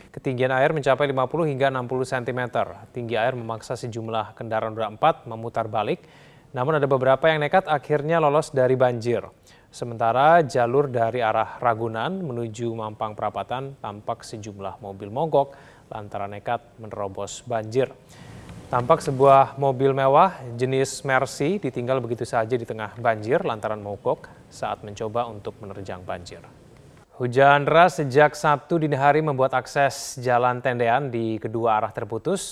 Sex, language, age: male, Indonesian, 20-39